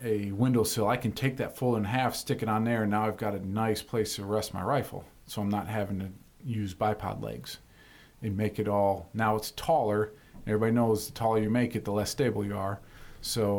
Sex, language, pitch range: male, English, 105-120 Hz